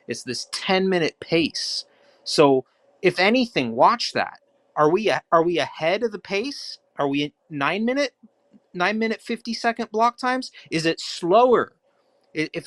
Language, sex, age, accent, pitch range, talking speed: English, male, 30-49, American, 140-190 Hz, 150 wpm